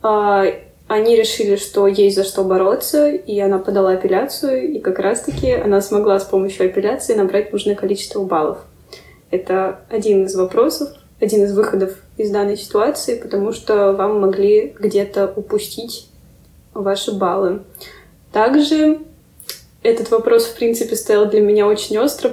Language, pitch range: Russian, 200-240 Hz